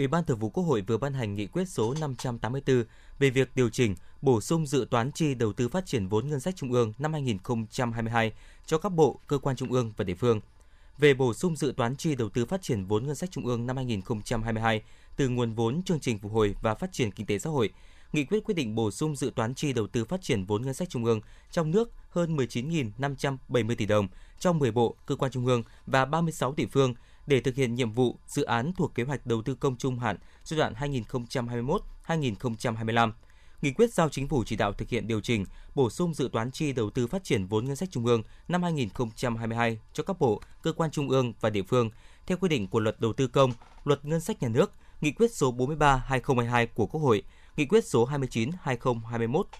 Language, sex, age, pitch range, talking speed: Vietnamese, male, 20-39, 115-145 Hz, 225 wpm